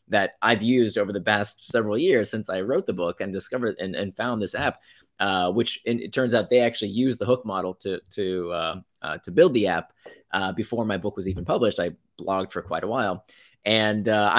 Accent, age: American, 30-49